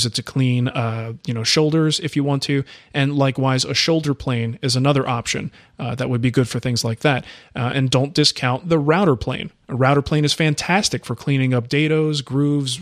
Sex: male